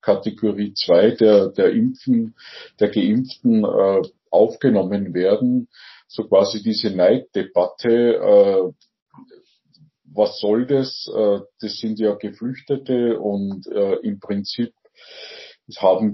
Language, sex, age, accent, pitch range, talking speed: German, male, 50-69, Austrian, 105-160 Hz, 105 wpm